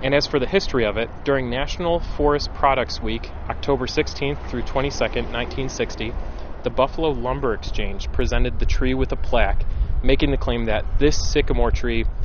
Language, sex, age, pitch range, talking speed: English, male, 30-49, 110-140 Hz, 165 wpm